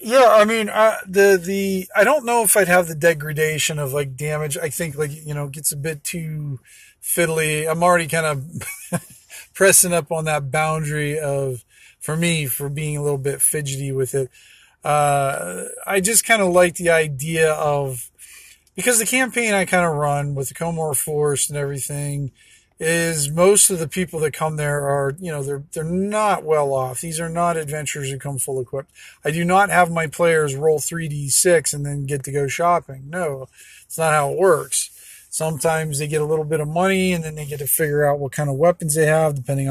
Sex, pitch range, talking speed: male, 145-180 Hz, 205 wpm